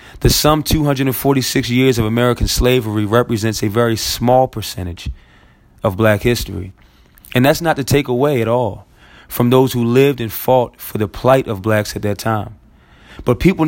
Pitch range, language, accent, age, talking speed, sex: 110-130 Hz, English, American, 20-39, 170 wpm, male